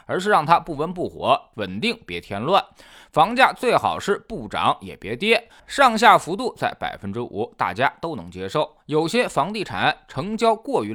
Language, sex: Chinese, male